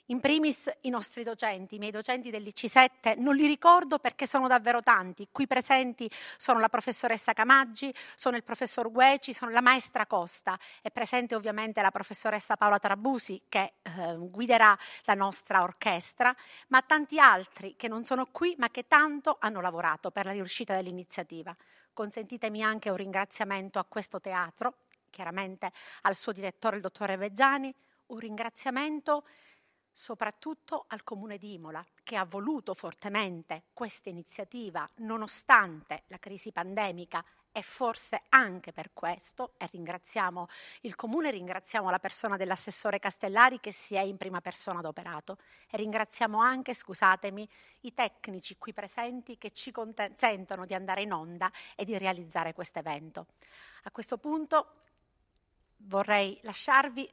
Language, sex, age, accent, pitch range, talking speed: Italian, female, 40-59, native, 190-250 Hz, 145 wpm